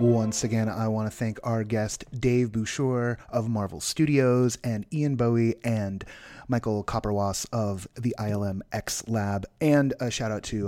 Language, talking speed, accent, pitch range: English, 155 wpm, American, 95-125 Hz